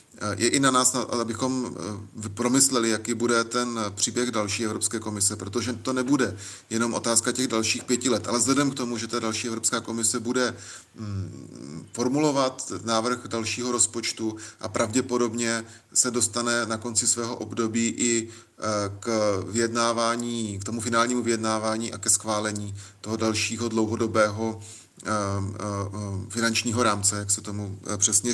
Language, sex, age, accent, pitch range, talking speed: Czech, male, 30-49, native, 110-120 Hz, 130 wpm